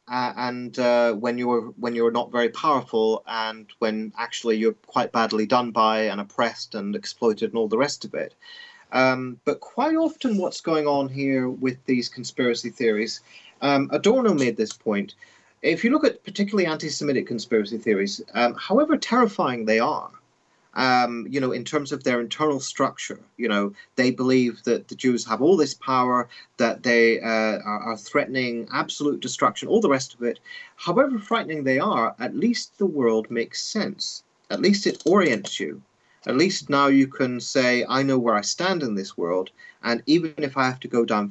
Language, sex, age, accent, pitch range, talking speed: English, male, 30-49, British, 115-160 Hz, 185 wpm